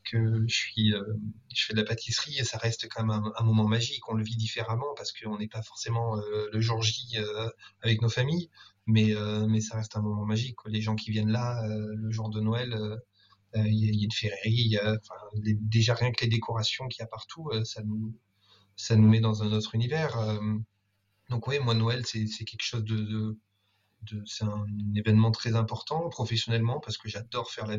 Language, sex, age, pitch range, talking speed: French, male, 20-39, 110-120 Hz, 220 wpm